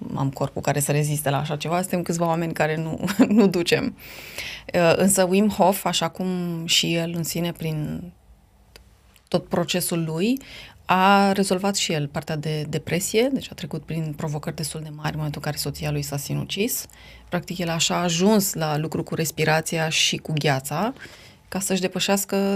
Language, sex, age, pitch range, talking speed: Romanian, female, 30-49, 150-185 Hz, 175 wpm